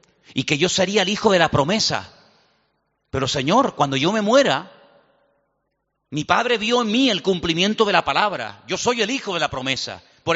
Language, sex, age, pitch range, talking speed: Spanish, male, 40-59, 160-245 Hz, 190 wpm